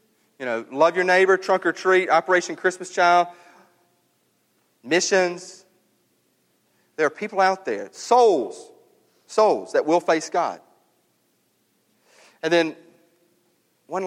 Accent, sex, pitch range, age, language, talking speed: American, male, 160-210 Hz, 40-59, English, 110 wpm